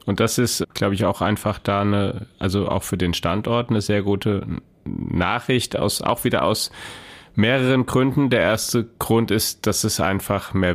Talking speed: 180 wpm